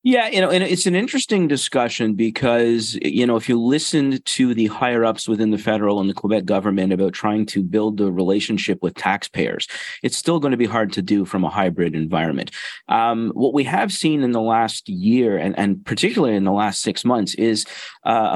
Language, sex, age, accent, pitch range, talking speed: English, male, 30-49, American, 95-115 Hz, 210 wpm